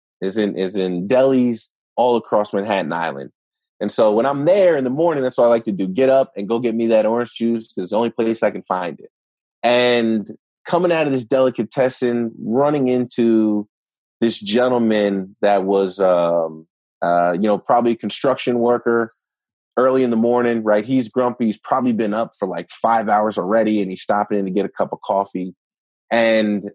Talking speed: 195 wpm